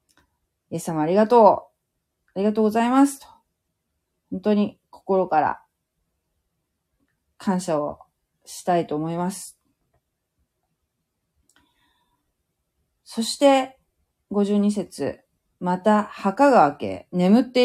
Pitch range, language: 150-220 Hz, Japanese